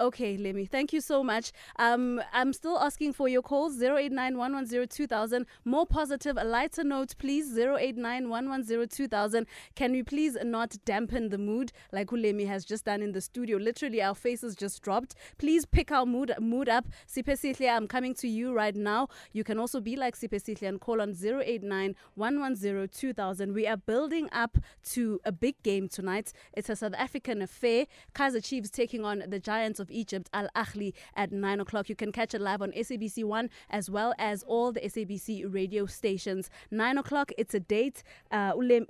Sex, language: female, English